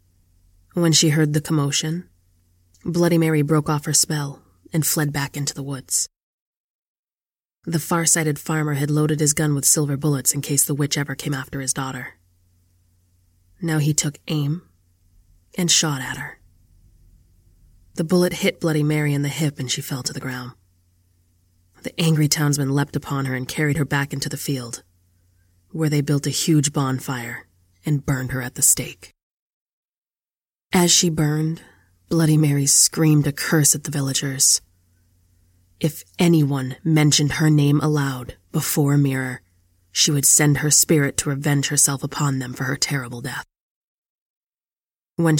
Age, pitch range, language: 20-39, 90-155 Hz, English